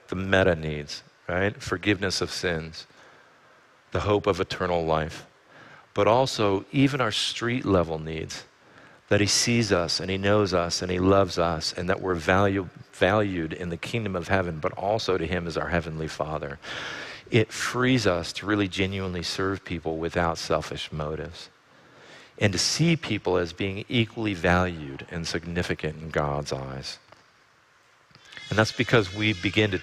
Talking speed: 160 wpm